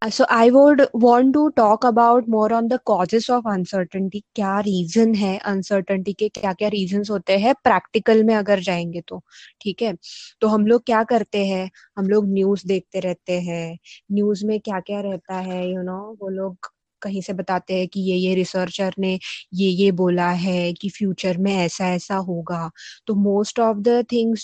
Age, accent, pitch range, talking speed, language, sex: 20-39, native, 195-245 Hz, 190 wpm, Hindi, female